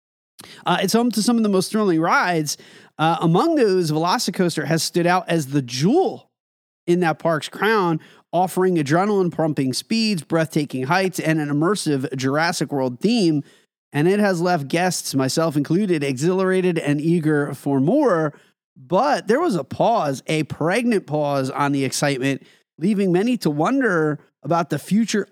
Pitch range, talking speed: 150-195 Hz, 155 wpm